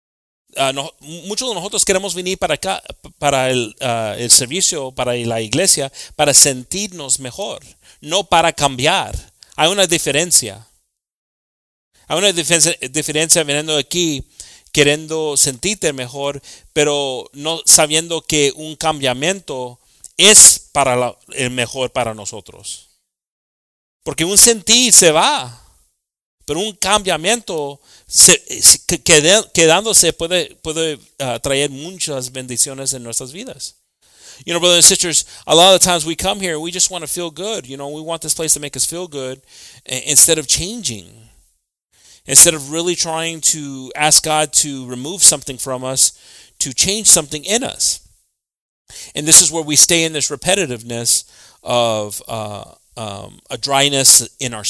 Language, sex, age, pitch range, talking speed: English, male, 40-59, 130-170 Hz, 140 wpm